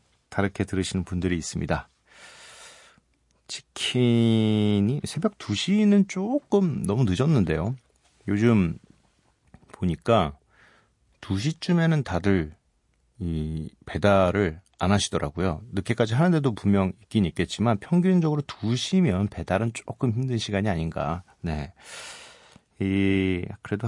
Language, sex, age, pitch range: Korean, male, 40-59, 85-120 Hz